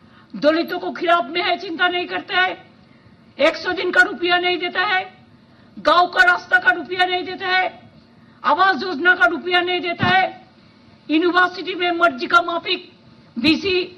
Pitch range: 265-345 Hz